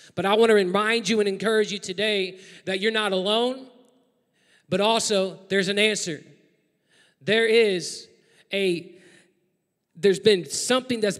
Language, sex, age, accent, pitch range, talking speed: English, male, 20-39, American, 180-215 Hz, 140 wpm